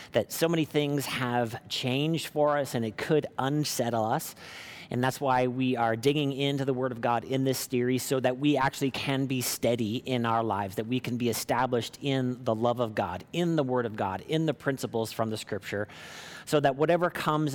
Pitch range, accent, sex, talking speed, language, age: 115-145 Hz, American, male, 210 wpm, English, 40-59